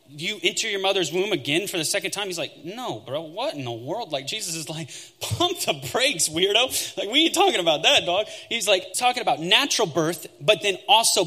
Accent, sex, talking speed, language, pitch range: American, male, 225 wpm, English, 175-245 Hz